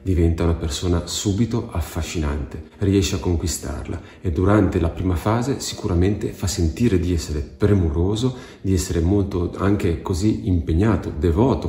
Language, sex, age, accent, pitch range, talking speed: Italian, male, 40-59, native, 85-105 Hz, 135 wpm